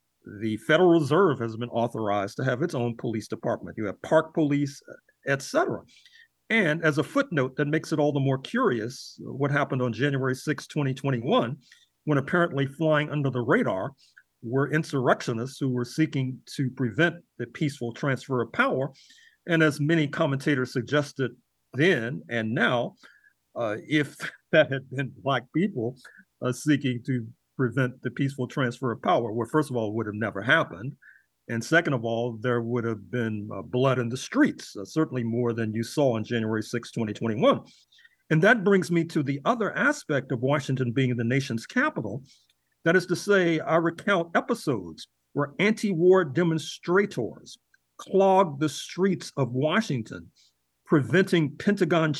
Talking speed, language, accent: 160 wpm, English, American